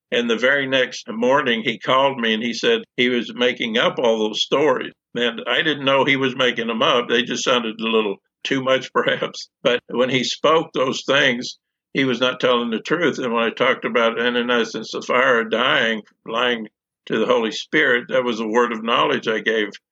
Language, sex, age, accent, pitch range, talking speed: English, male, 60-79, American, 110-125 Hz, 210 wpm